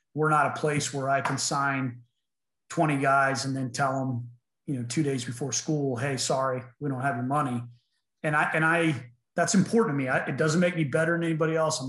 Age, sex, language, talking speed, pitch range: 30-49, male, English, 225 wpm, 130-155 Hz